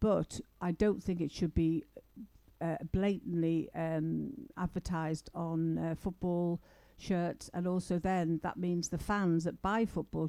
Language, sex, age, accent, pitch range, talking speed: English, female, 60-79, British, 165-195 Hz, 145 wpm